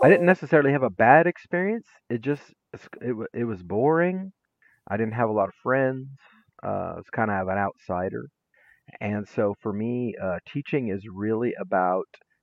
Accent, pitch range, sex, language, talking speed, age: American, 100-130 Hz, male, English, 175 wpm, 40-59